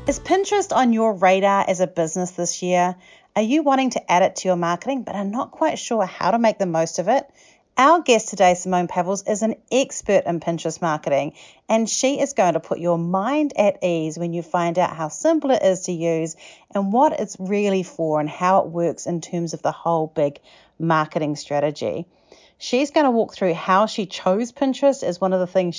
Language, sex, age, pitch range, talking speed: English, female, 40-59, 170-235 Hz, 215 wpm